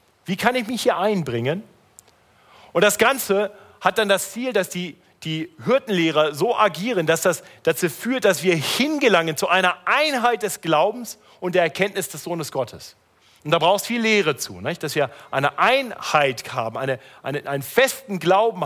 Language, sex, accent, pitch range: German, male, German, 140-210 Hz